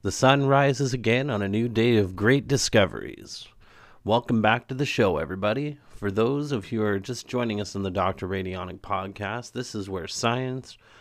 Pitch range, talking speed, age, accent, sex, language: 100-125 Hz, 190 wpm, 30-49, American, male, English